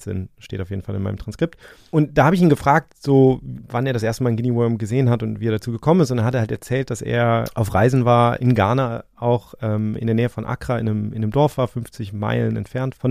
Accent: German